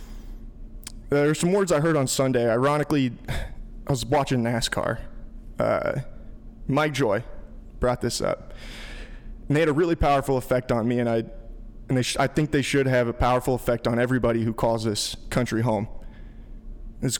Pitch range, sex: 120-150 Hz, male